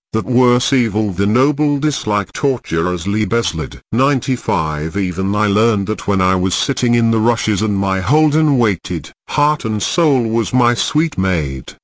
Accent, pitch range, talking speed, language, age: British, 100-135 Hz, 165 wpm, German, 50-69